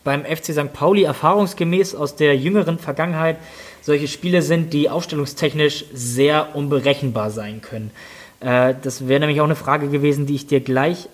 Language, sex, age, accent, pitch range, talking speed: German, male, 20-39, German, 140-155 Hz, 160 wpm